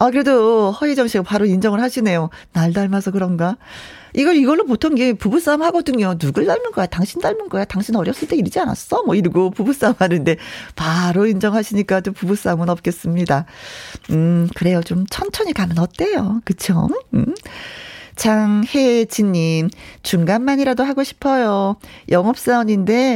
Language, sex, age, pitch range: Korean, female, 40-59, 175-245 Hz